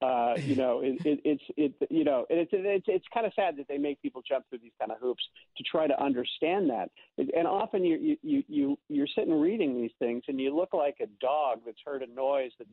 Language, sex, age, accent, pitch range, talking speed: English, male, 50-69, American, 125-180 Hz, 265 wpm